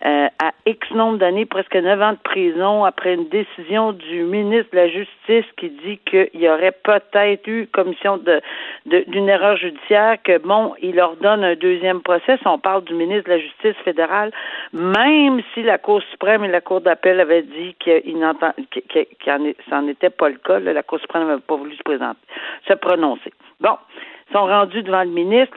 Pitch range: 175-220 Hz